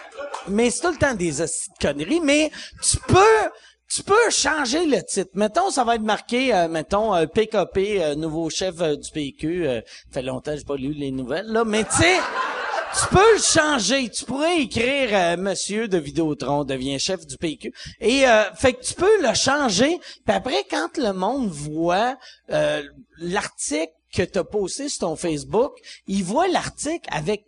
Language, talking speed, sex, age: French, 190 wpm, male, 40-59